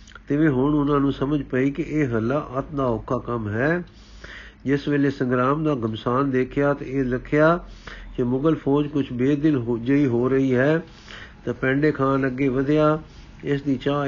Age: 50-69